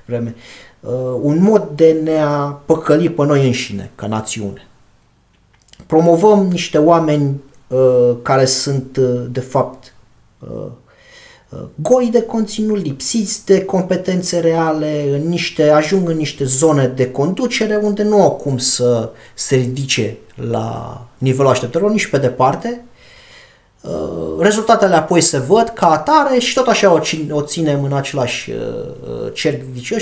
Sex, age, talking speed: male, 30-49, 130 wpm